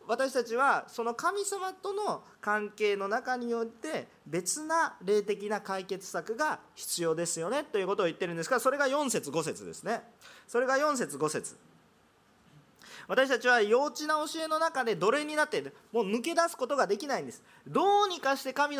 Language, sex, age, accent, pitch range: Japanese, male, 40-59, native, 220-315 Hz